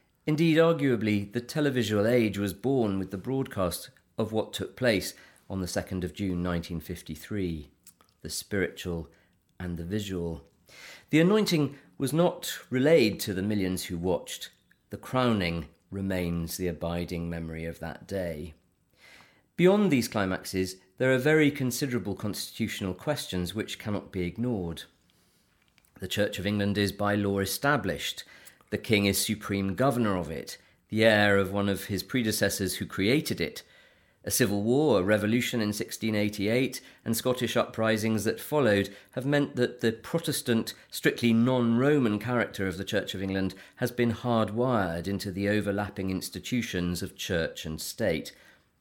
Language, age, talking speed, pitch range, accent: English, 40-59, 145 wpm, 90-120 Hz, British